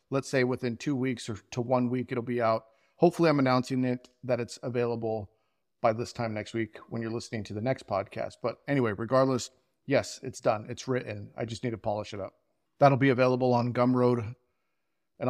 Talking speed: 205 wpm